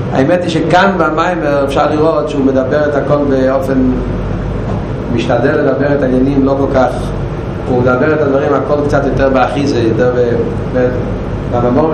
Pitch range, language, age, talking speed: 115-140 Hz, Hebrew, 30-49, 140 wpm